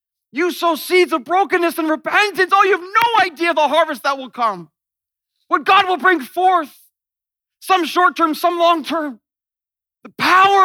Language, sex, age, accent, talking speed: English, male, 40-59, American, 170 wpm